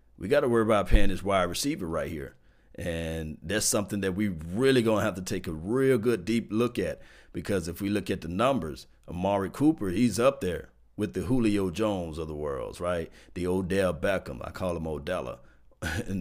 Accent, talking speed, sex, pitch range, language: American, 205 wpm, male, 85-130 Hz, English